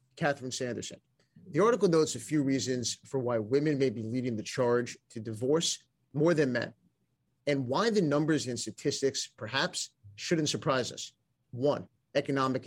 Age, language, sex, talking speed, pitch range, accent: 30-49, English, male, 155 wpm, 125-150 Hz, American